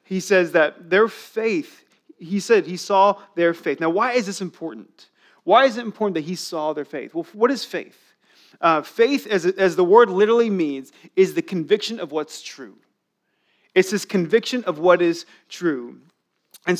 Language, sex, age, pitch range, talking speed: English, male, 30-49, 180-235 Hz, 180 wpm